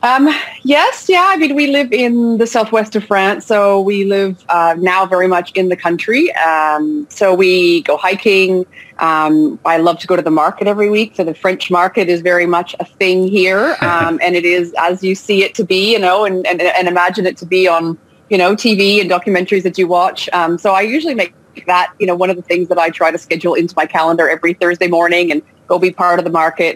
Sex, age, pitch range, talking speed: female, 30-49, 165-200 Hz, 235 wpm